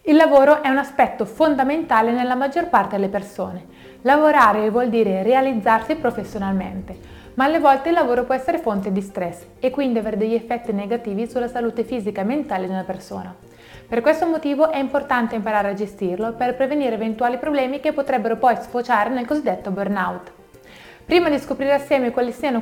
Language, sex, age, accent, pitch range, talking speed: Italian, female, 20-39, native, 210-265 Hz, 170 wpm